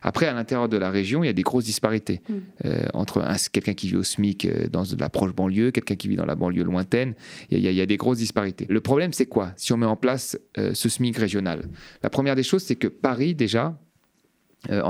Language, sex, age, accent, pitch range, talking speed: French, male, 30-49, French, 100-130 Hz, 255 wpm